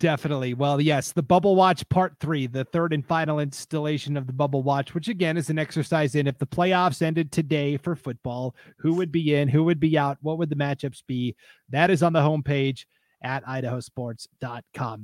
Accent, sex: American, male